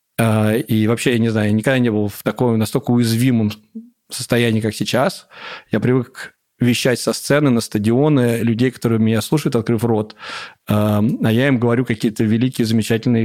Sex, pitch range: male, 120-160 Hz